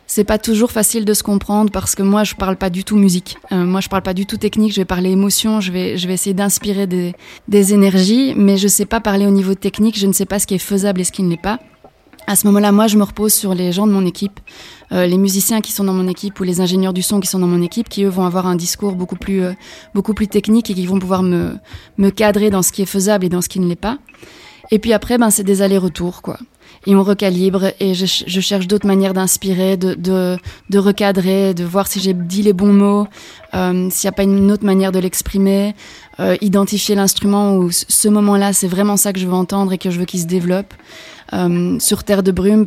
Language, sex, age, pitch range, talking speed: French, female, 20-39, 185-205 Hz, 265 wpm